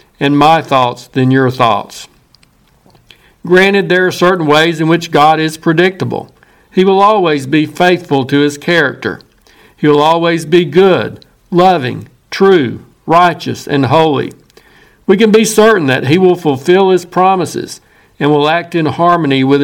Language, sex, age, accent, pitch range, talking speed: English, male, 60-79, American, 145-185 Hz, 155 wpm